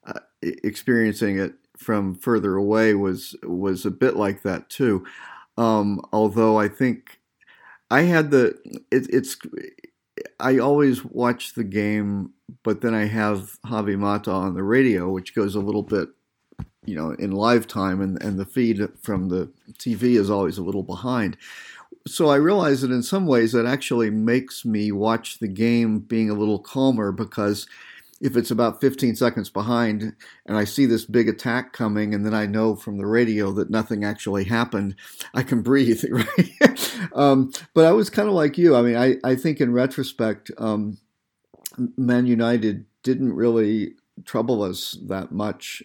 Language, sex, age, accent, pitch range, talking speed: English, male, 50-69, American, 100-120 Hz, 170 wpm